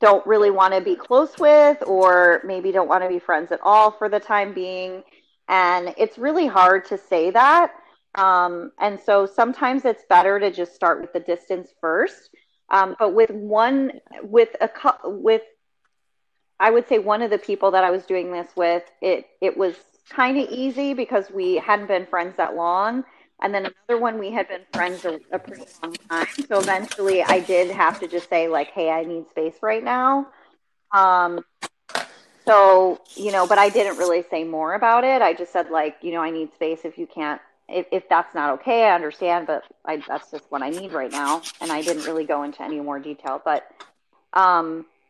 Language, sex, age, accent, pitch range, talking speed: English, female, 30-49, American, 175-215 Hz, 200 wpm